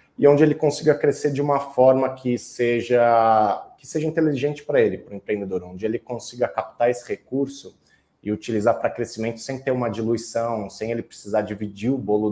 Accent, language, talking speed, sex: Brazilian, Portuguese, 185 wpm, male